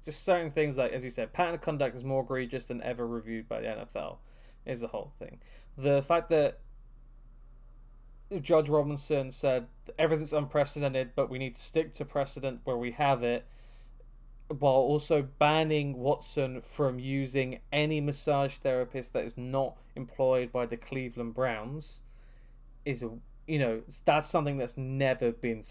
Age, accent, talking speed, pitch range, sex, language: 20-39, British, 160 wpm, 120-145 Hz, male, English